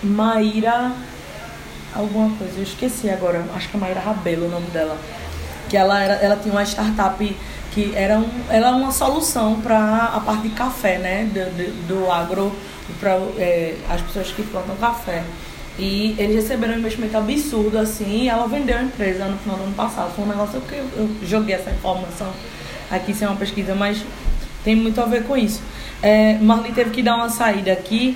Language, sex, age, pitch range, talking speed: Portuguese, female, 20-39, 190-220 Hz, 185 wpm